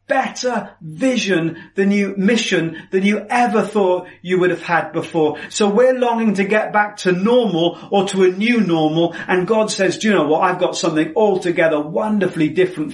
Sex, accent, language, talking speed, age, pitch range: male, British, English, 190 wpm, 40-59, 155-215 Hz